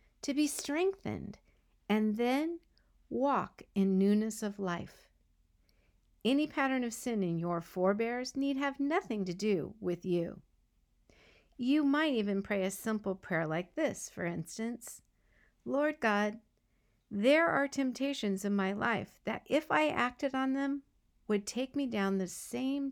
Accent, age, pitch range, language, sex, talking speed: American, 50-69, 190-265 Hz, English, female, 145 wpm